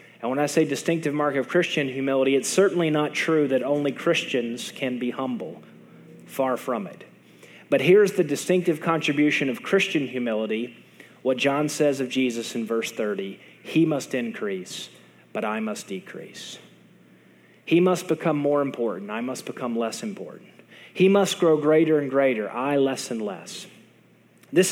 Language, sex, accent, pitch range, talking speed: English, male, American, 135-180 Hz, 160 wpm